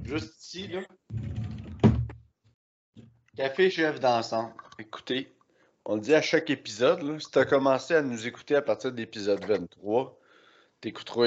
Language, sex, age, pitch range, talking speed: French, male, 30-49, 110-140 Hz, 135 wpm